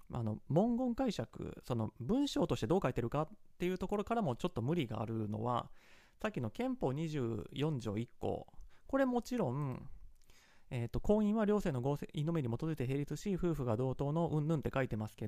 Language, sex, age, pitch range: Japanese, male, 30-49, 125-185 Hz